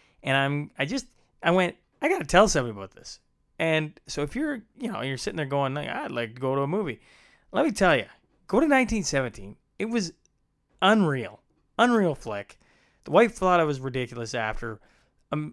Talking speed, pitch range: 195 wpm, 125-155 Hz